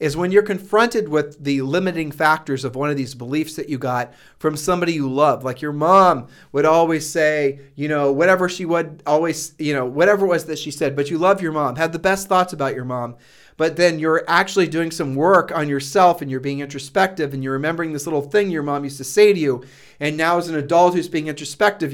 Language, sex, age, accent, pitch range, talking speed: English, male, 40-59, American, 145-180 Hz, 235 wpm